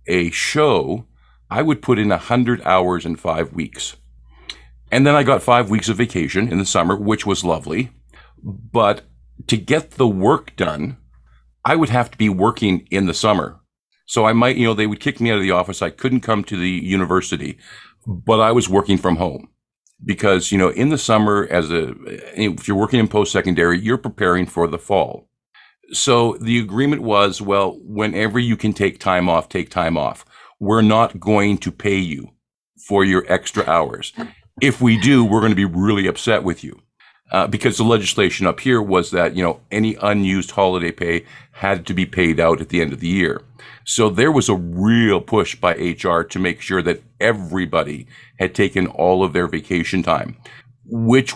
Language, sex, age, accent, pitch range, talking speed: English, male, 50-69, American, 90-115 Hz, 195 wpm